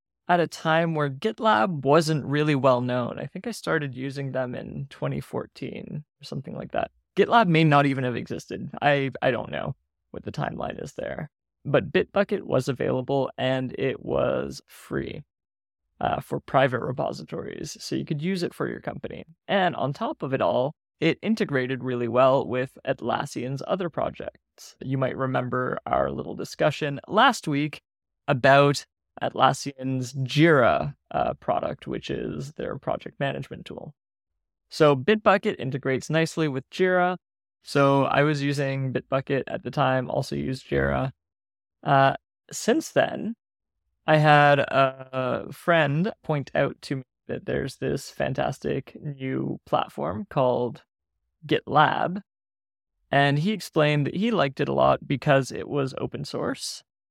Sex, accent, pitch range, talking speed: male, American, 125-155 Hz, 145 wpm